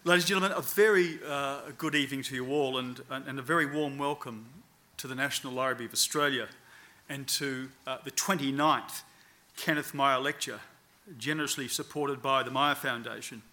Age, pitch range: 40-59, 130-150 Hz